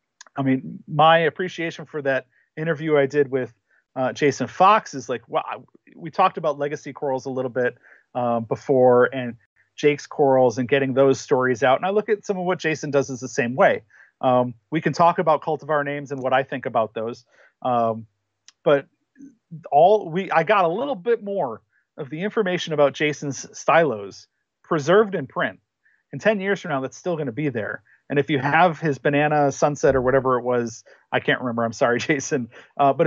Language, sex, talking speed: English, male, 200 wpm